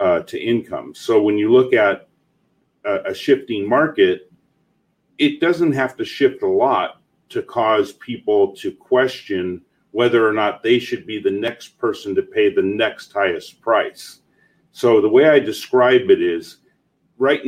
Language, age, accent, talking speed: English, 40-59, American, 160 wpm